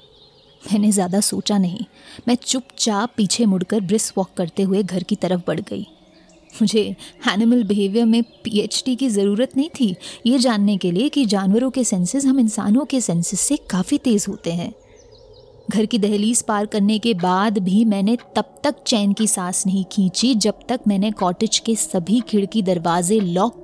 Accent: native